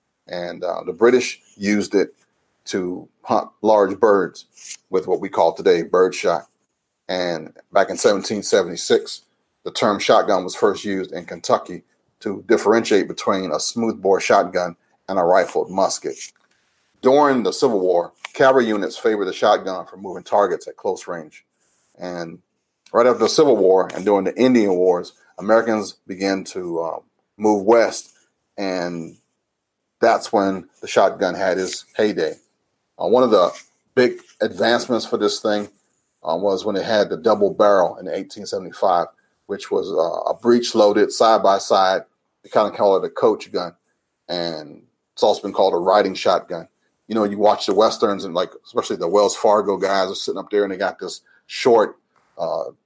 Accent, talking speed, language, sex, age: American, 160 wpm, English, male, 40-59